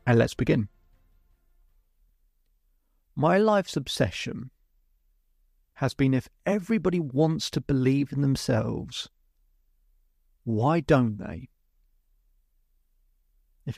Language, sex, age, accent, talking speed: English, male, 40-59, British, 85 wpm